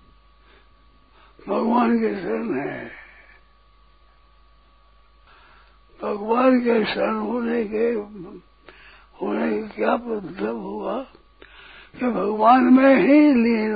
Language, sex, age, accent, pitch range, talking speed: Hindi, male, 60-79, native, 195-250 Hz, 85 wpm